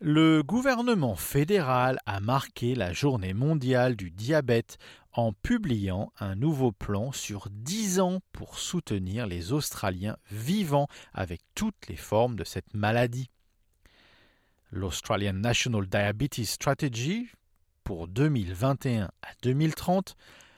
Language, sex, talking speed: English, male, 110 wpm